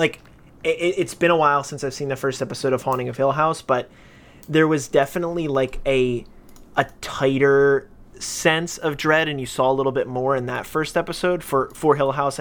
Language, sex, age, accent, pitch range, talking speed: English, male, 20-39, American, 130-155 Hz, 205 wpm